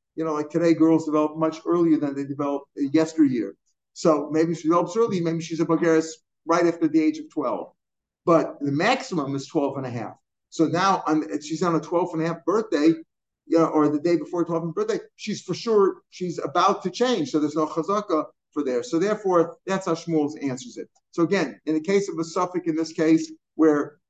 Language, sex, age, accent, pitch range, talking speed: English, male, 50-69, American, 150-175 Hz, 215 wpm